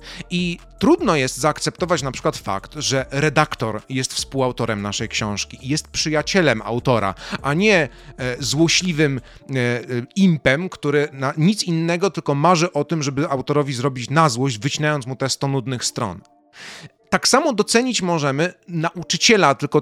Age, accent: 30-49, native